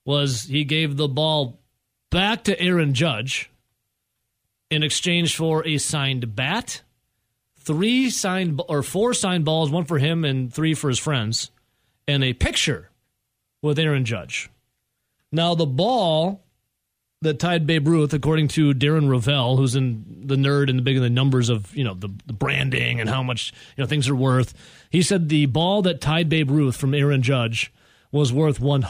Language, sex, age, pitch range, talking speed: English, male, 30-49, 125-160 Hz, 175 wpm